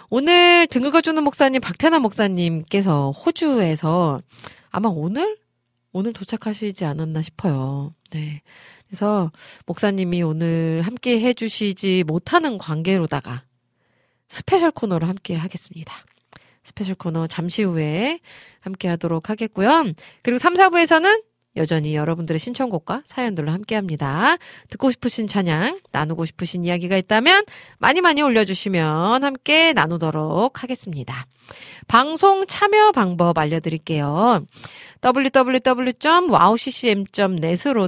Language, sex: Korean, female